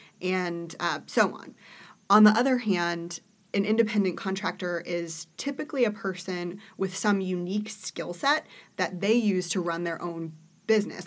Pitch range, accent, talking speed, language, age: 175-205 Hz, American, 150 wpm, English, 20-39